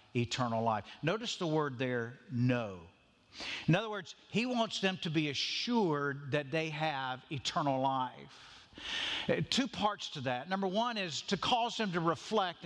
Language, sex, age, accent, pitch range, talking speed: English, male, 50-69, American, 155-220 Hz, 155 wpm